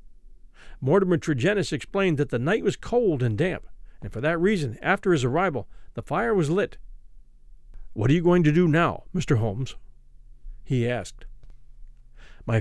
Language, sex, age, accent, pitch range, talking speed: English, male, 50-69, American, 120-200 Hz, 155 wpm